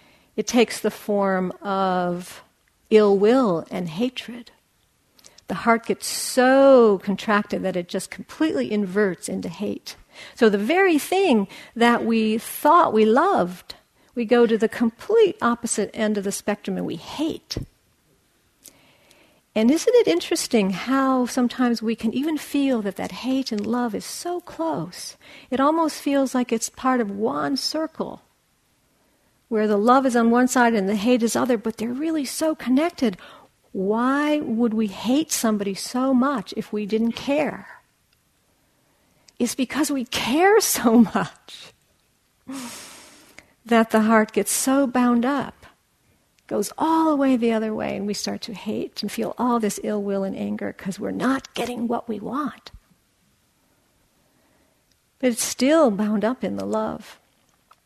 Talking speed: 150 wpm